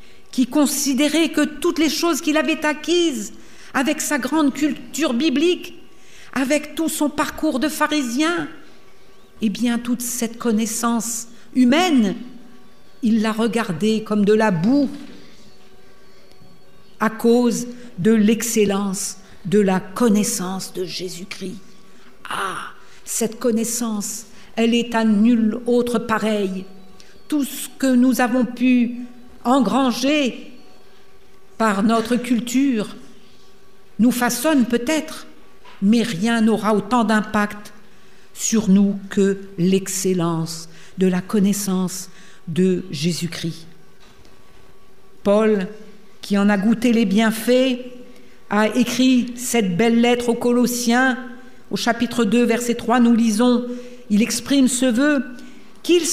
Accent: French